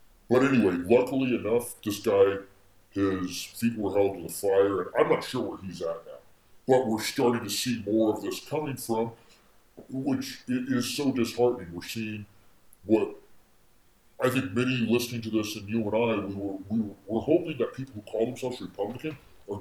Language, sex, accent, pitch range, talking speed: English, female, American, 100-130 Hz, 185 wpm